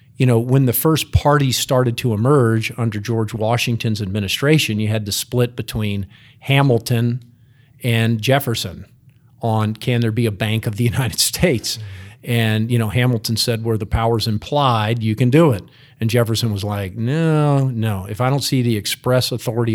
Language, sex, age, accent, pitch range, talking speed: English, male, 50-69, American, 115-135 Hz, 175 wpm